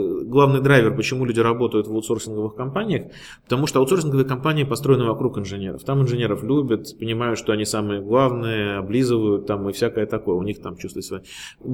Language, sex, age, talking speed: Russian, male, 20-39, 175 wpm